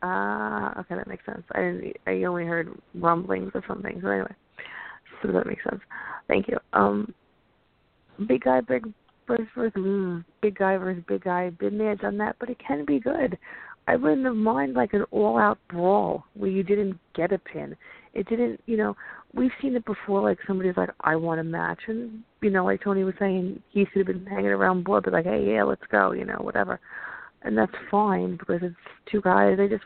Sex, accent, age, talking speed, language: female, American, 30-49, 205 wpm, English